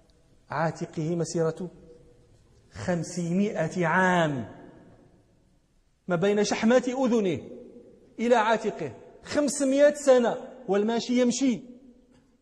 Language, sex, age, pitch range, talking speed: Arabic, male, 40-59, 125-200 Hz, 70 wpm